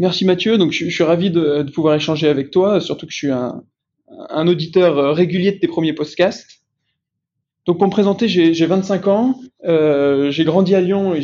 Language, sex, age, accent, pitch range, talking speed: French, male, 20-39, French, 150-180 Hz, 215 wpm